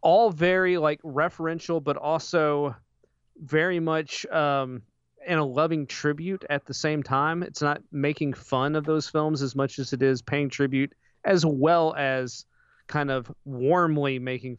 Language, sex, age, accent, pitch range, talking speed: English, male, 30-49, American, 130-155 Hz, 155 wpm